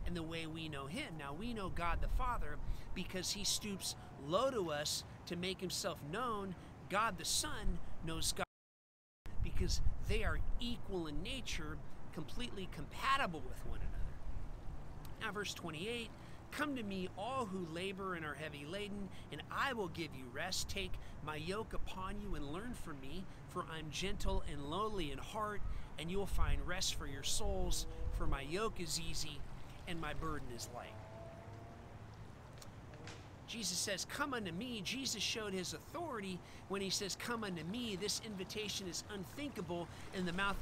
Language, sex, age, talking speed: English, male, 40-59, 165 wpm